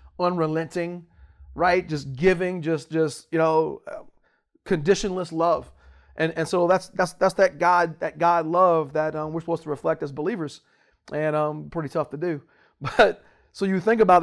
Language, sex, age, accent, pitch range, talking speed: English, male, 30-49, American, 160-200 Hz, 170 wpm